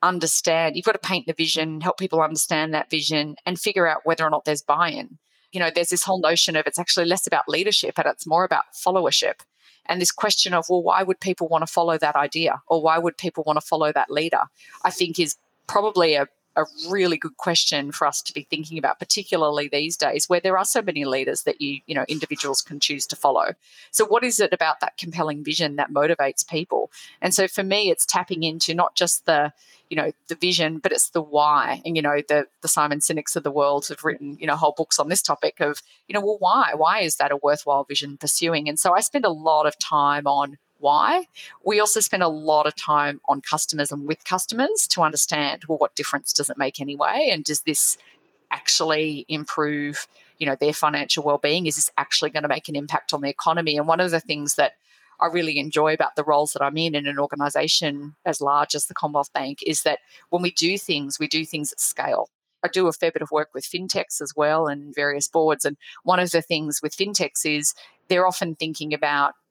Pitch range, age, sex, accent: 145-175 Hz, 30-49, female, Australian